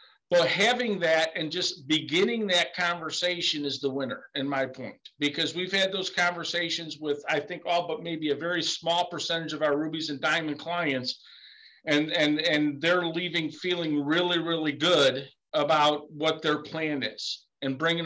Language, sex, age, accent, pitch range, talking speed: English, male, 50-69, American, 150-175 Hz, 175 wpm